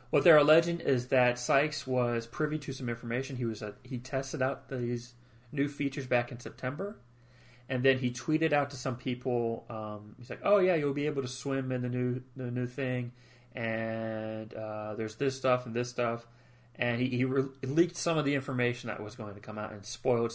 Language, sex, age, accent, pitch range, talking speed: English, male, 30-49, American, 120-135 Hz, 210 wpm